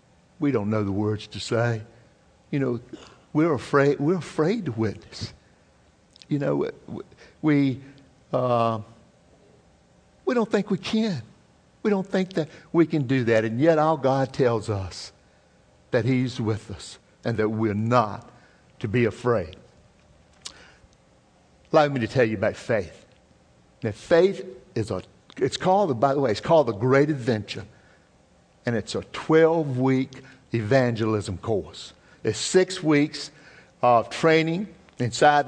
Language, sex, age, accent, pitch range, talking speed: English, male, 60-79, American, 110-150 Hz, 140 wpm